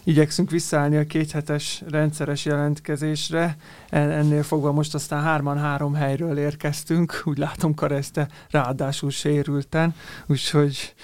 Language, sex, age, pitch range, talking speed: Hungarian, male, 30-49, 145-170 Hz, 105 wpm